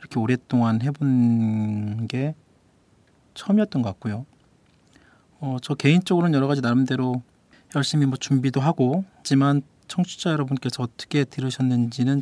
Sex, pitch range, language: male, 115-145 Hz, Korean